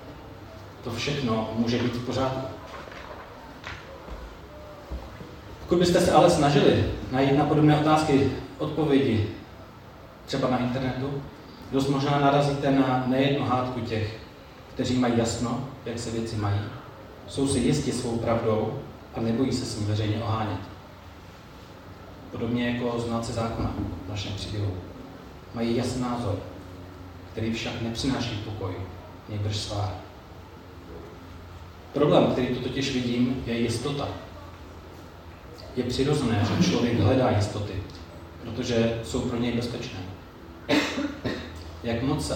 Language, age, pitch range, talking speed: Czech, 30-49, 100-130 Hz, 120 wpm